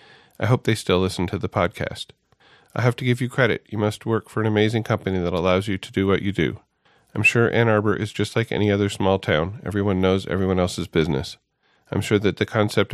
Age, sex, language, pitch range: 40-59, male, English, 90-110 Hz